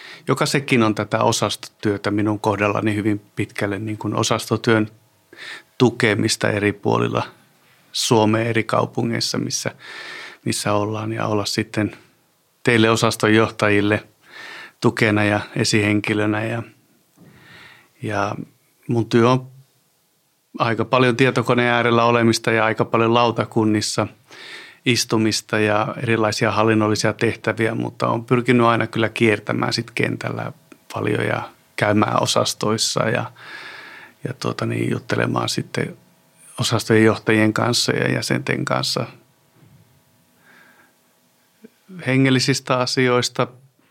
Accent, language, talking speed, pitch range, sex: native, Finnish, 100 wpm, 105-120 Hz, male